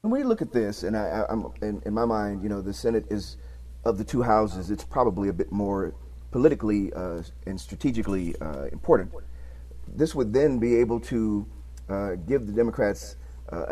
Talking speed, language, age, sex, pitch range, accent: 180 wpm, English, 40-59, male, 90-115 Hz, American